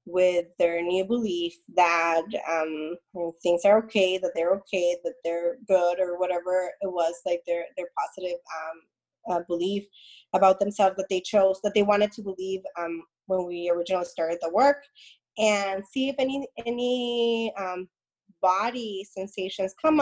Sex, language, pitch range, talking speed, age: female, English, 190-240 Hz, 155 wpm, 20-39